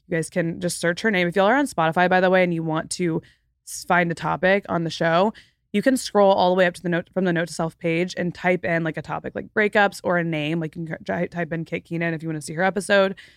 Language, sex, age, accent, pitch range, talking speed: English, female, 20-39, American, 165-195 Hz, 295 wpm